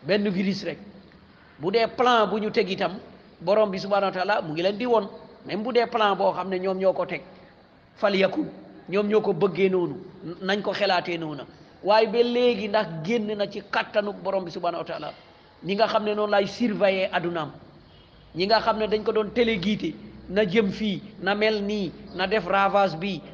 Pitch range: 180-220 Hz